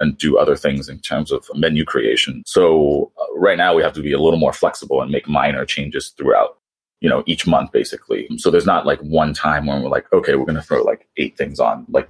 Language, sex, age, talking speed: English, male, 30-49, 245 wpm